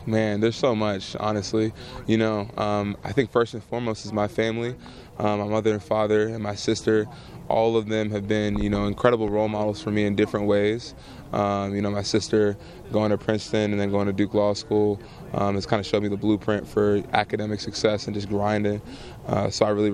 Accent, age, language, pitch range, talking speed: American, 20-39, English, 100-110 Hz, 215 wpm